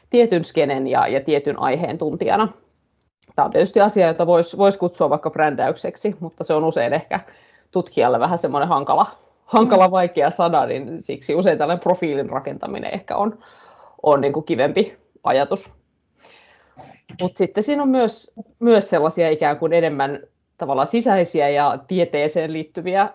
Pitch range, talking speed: 155-210 Hz, 145 wpm